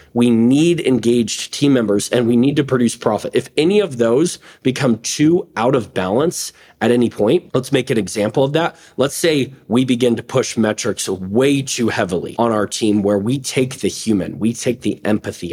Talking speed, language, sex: 195 wpm, English, male